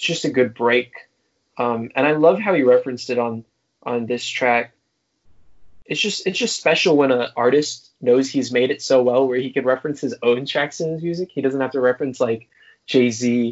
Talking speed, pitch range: 210 wpm, 120-150 Hz